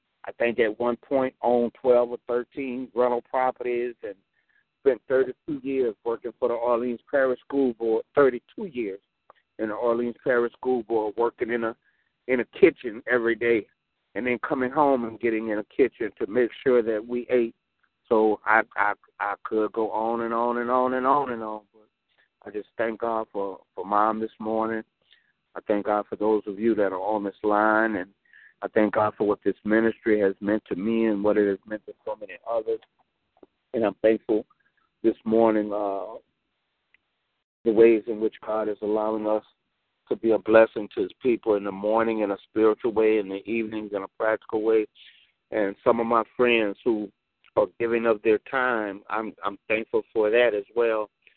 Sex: male